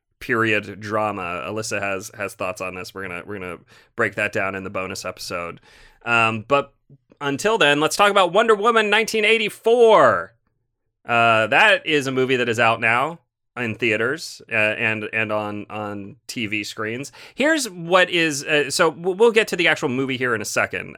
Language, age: English, 30-49